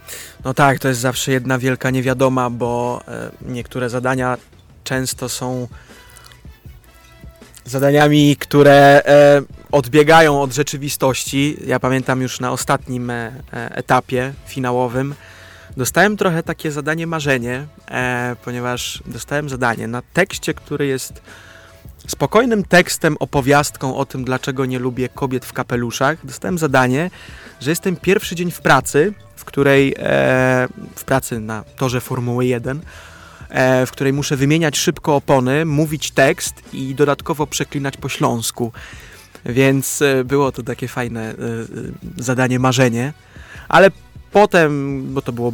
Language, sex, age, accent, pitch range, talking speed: Polish, male, 20-39, native, 125-145 Hz, 115 wpm